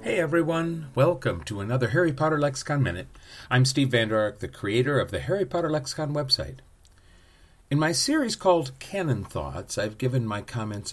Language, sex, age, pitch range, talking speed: English, male, 50-69, 95-135 Hz, 175 wpm